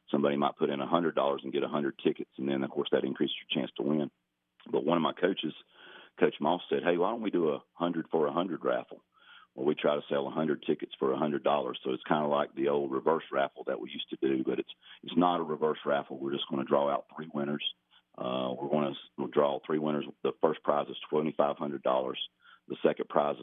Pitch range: 65-75 Hz